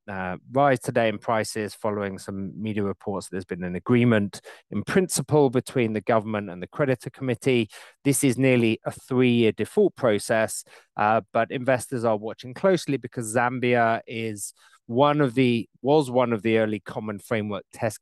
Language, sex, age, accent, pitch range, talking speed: English, male, 30-49, British, 95-125 Hz, 165 wpm